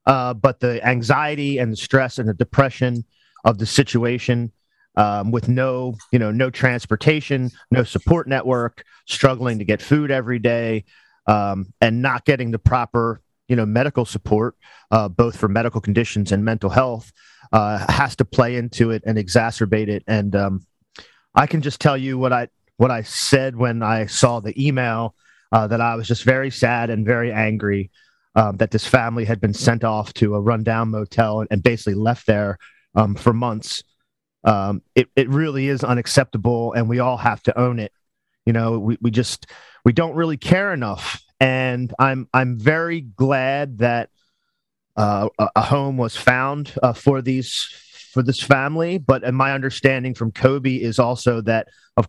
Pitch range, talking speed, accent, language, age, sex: 110-130 Hz, 175 wpm, American, English, 40-59, male